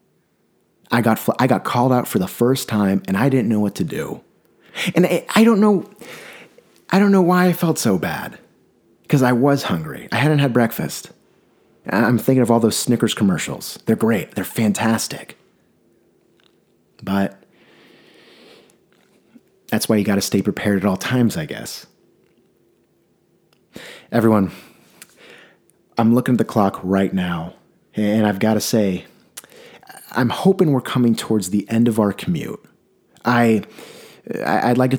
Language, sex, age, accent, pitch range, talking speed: English, male, 30-49, American, 100-120 Hz, 155 wpm